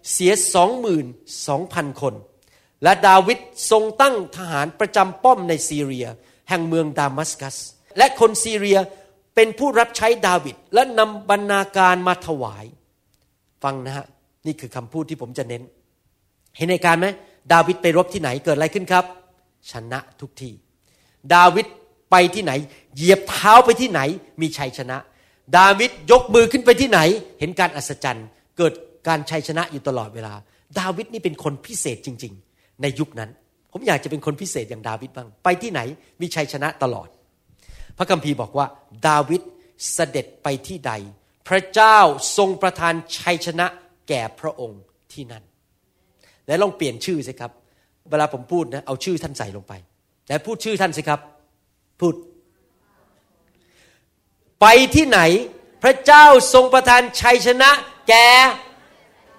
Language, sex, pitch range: Thai, male, 135-195 Hz